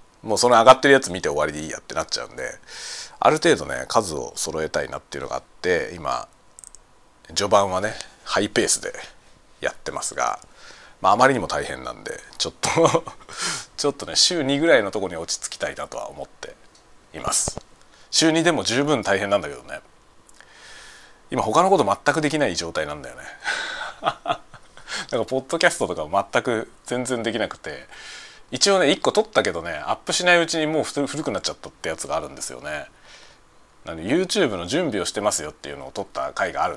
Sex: male